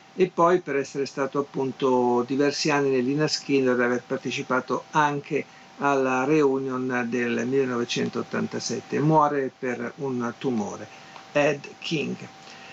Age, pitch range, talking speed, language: 50-69, 130-160 Hz, 115 wpm, Italian